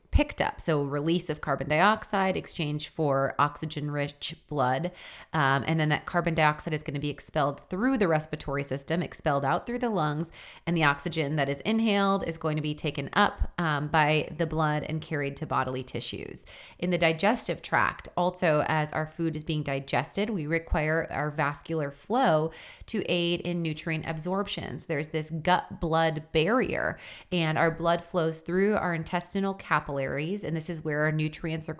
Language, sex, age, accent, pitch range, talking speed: English, female, 30-49, American, 150-175 Hz, 175 wpm